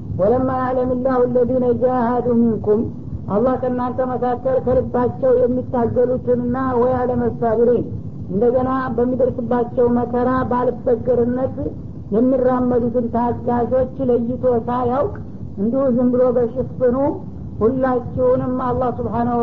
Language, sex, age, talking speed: Amharic, female, 60-79, 95 wpm